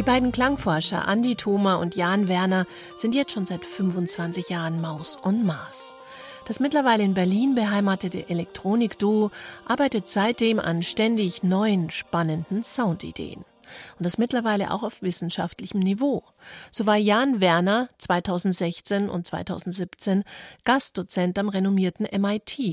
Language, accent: German, German